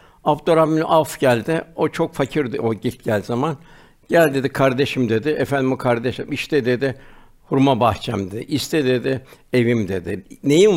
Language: Turkish